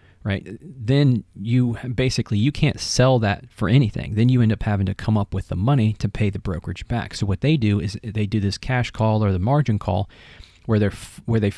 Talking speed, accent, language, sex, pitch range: 230 wpm, American, English, male, 100-120 Hz